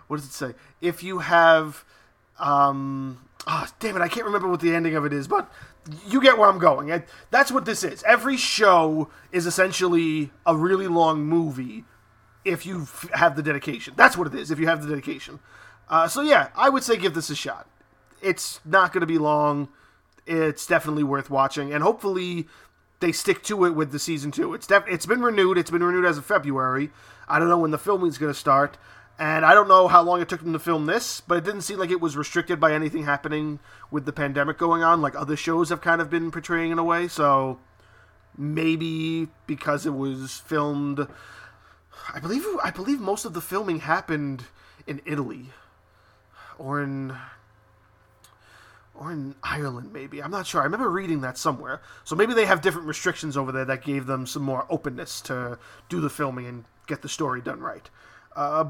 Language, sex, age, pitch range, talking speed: English, male, 20-39, 140-175 Hz, 205 wpm